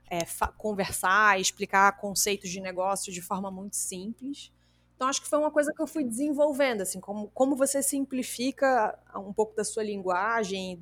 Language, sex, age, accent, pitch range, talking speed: Portuguese, female, 20-39, Brazilian, 195-250 Hz, 170 wpm